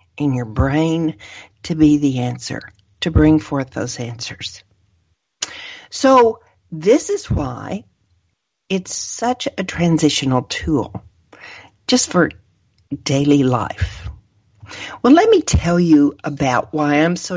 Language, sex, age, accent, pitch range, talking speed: English, female, 50-69, American, 130-185 Hz, 115 wpm